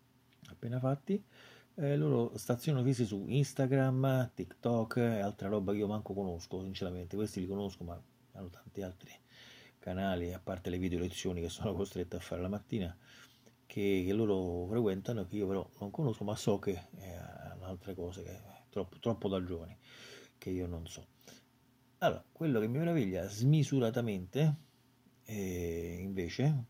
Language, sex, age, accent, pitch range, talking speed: Italian, male, 30-49, native, 95-130 Hz, 155 wpm